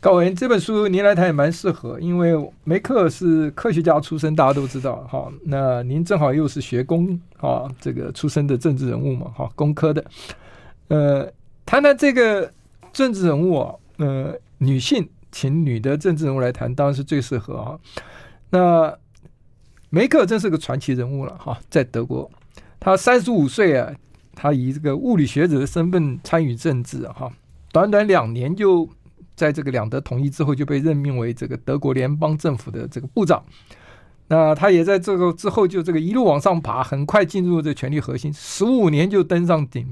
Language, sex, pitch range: Chinese, male, 135-180 Hz